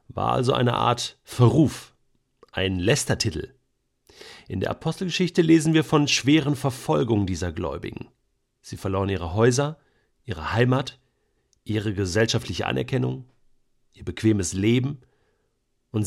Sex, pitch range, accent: male, 110-145 Hz, German